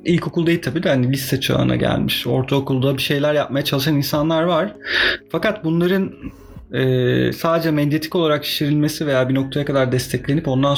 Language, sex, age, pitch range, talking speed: Turkish, male, 30-49, 125-160 Hz, 155 wpm